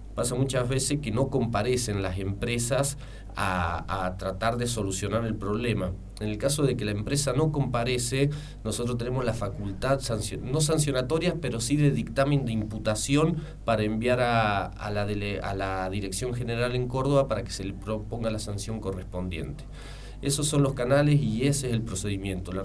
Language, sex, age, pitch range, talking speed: Spanish, male, 40-59, 105-135 Hz, 175 wpm